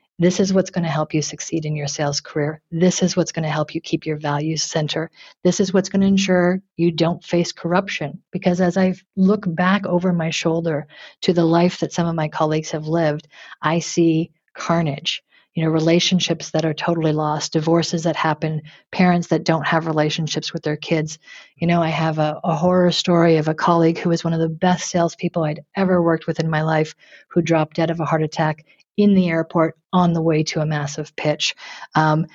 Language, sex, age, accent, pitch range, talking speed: English, female, 50-69, American, 155-175 Hz, 210 wpm